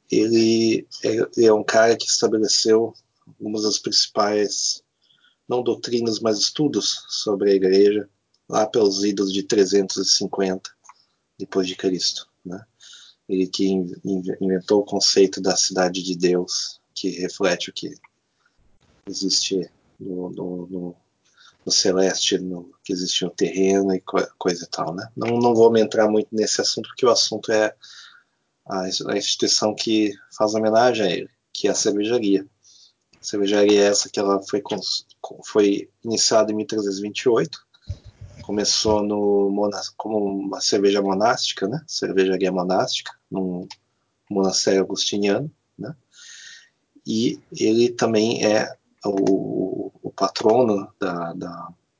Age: 20-39